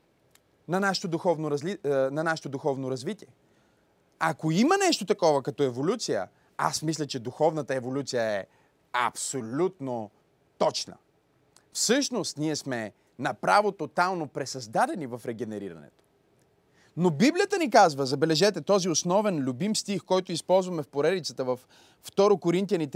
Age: 30-49